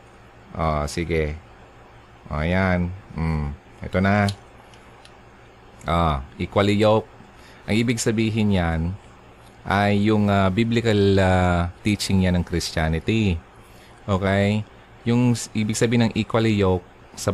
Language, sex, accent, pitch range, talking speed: Filipino, male, native, 80-115 Hz, 105 wpm